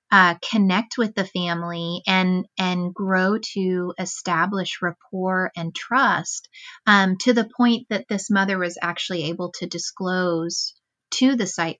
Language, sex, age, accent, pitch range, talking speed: English, female, 30-49, American, 175-200 Hz, 140 wpm